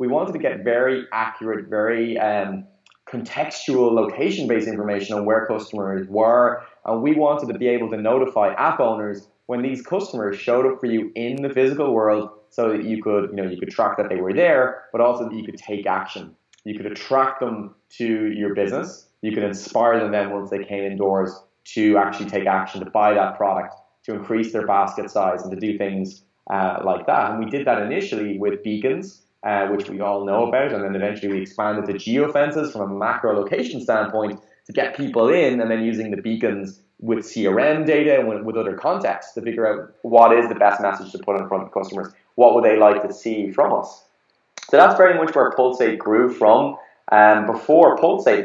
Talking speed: 205 wpm